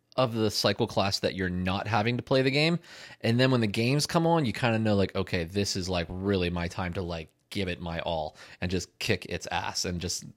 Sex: male